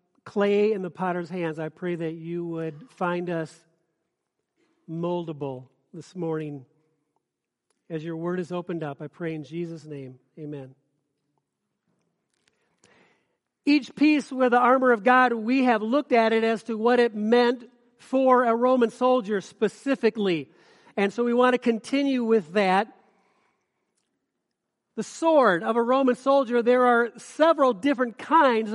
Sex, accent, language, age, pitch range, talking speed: male, American, English, 50-69, 200-255 Hz, 140 wpm